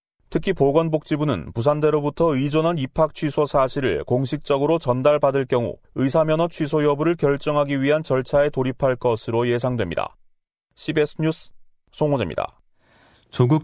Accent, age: native, 40-59